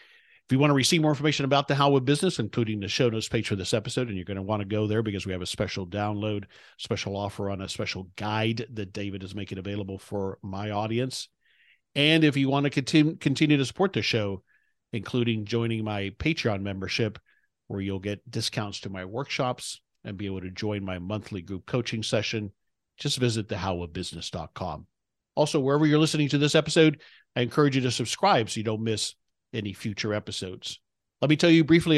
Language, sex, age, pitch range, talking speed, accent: English, male, 50-69, 100-125 Hz, 200 wpm, American